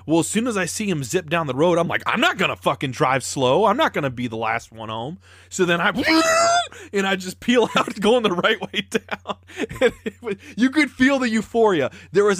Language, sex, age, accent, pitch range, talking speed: English, male, 30-49, American, 100-150 Hz, 250 wpm